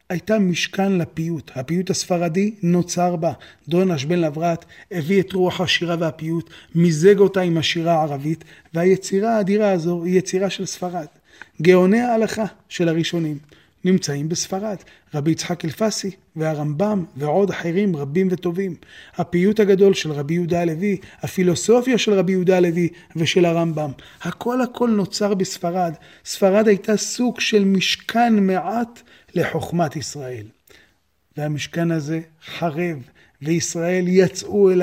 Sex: male